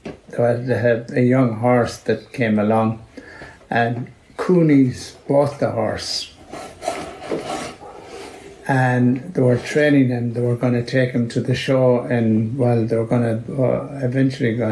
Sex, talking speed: male, 140 wpm